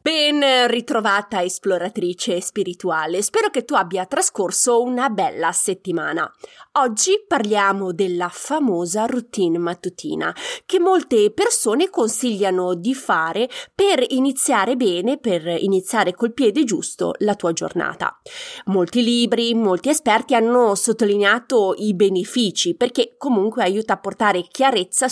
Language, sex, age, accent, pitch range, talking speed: Italian, female, 20-39, native, 185-260 Hz, 115 wpm